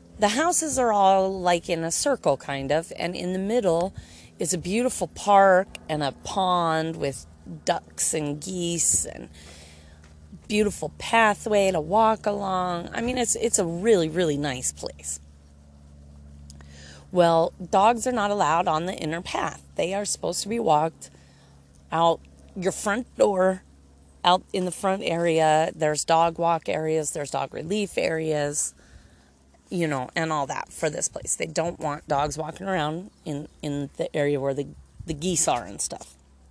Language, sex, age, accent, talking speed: English, female, 30-49, American, 160 wpm